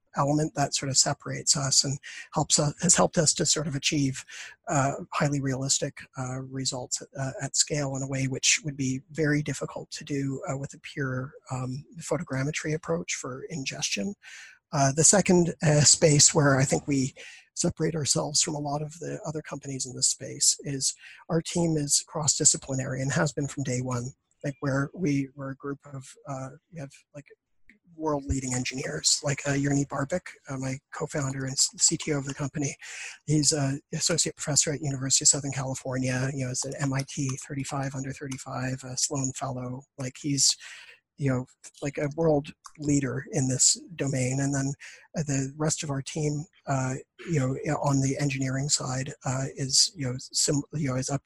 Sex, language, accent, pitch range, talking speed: male, English, American, 135-150 Hz, 185 wpm